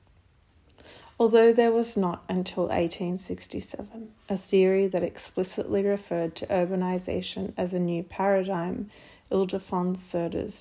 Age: 30-49